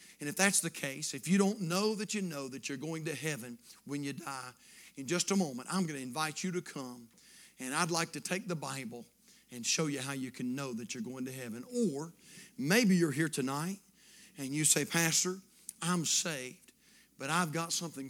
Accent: American